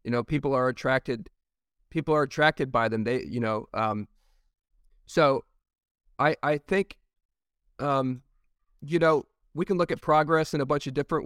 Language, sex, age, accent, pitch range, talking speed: English, male, 40-59, American, 115-145 Hz, 165 wpm